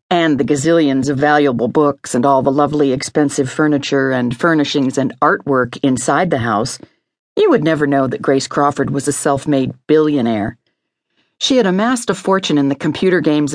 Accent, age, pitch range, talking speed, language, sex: American, 50-69, 140-165 Hz, 175 wpm, English, female